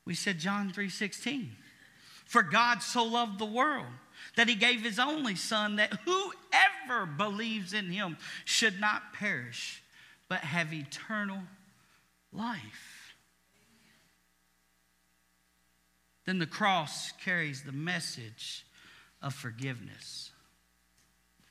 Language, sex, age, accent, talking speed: English, male, 50-69, American, 105 wpm